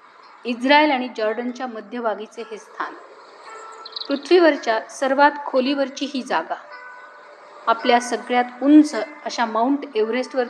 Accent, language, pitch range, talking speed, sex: native, Marathi, 230-295 Hz, 95 wpm, female